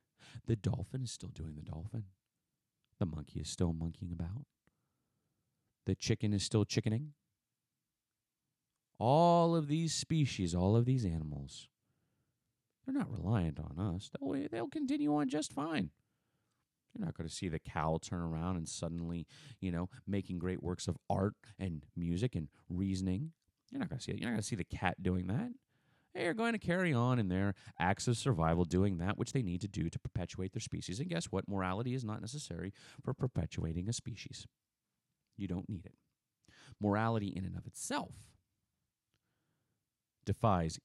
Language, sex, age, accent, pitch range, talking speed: English, male, 30-49, American, 90-125 Hz, 170 wpm